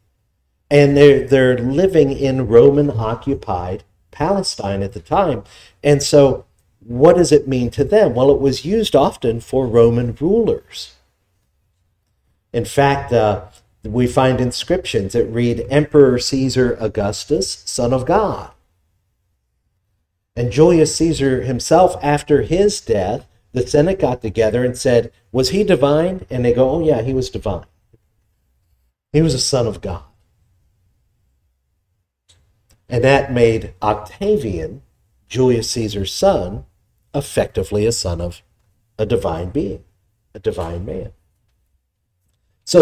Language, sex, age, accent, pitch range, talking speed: English, male, 50-69, American, 100-140 Hz, 125 wpm